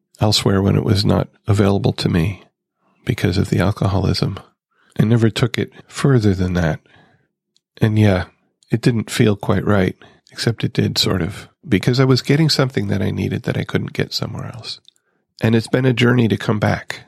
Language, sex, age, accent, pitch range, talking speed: English, male, 40-59, American, 100-125 Hz, 185 wpm